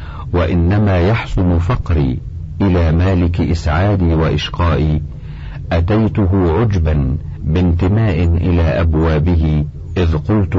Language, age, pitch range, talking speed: Arabic, 50-69, 80-90 Hz, 80 wpm